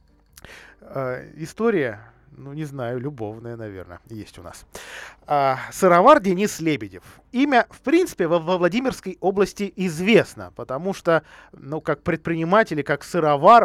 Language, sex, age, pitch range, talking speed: Russian, male, 20-39, 120-180 Hz, 115 wpm